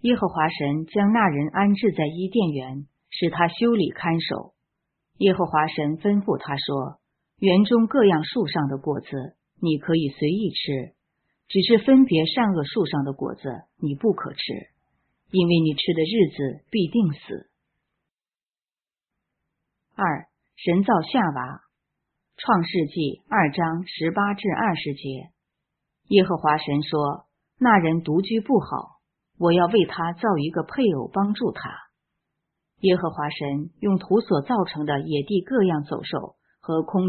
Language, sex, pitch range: Chinese, female, 150-200 Hz